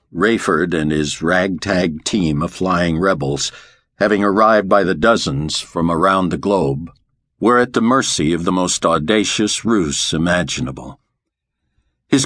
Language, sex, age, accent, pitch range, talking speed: English, male, 60-79, American, 85-110 Hz, 135 wpm